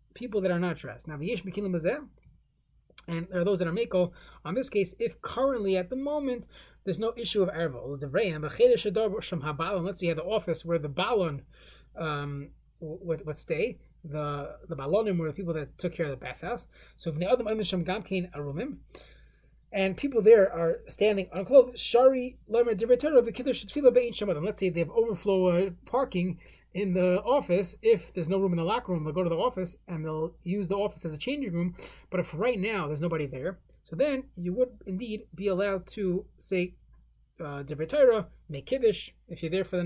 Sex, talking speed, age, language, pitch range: male, 175 wpm, 30-49, English, 165-215 Hz